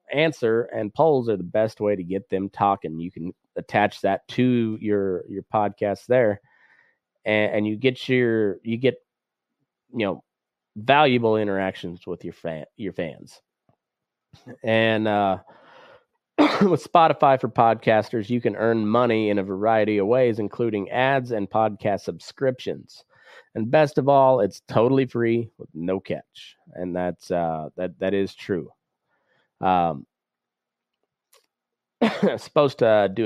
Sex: male